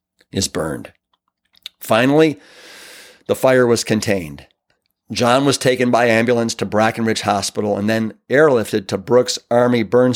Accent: American